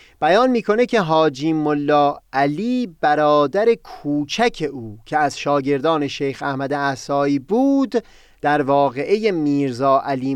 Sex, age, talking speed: male, 30-49, 115 wpm